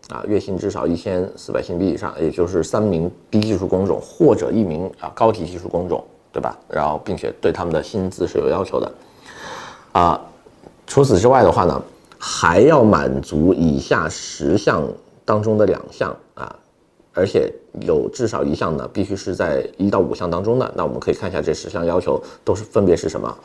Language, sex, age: Chinese, male, 30-49